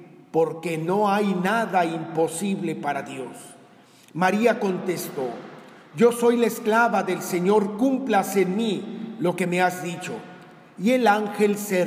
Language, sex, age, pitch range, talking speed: Spanish, male, 50-69, 180-230 Hz, 135 wpm